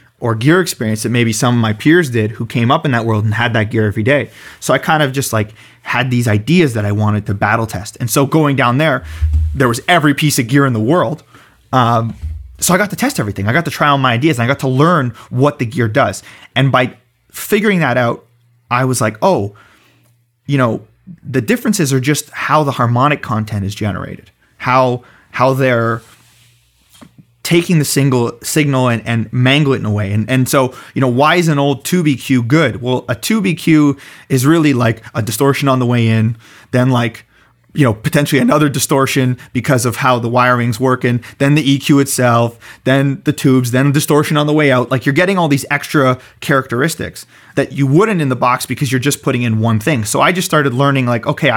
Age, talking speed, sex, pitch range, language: 20-39, 215 wpm, male, 115-145 Hz, English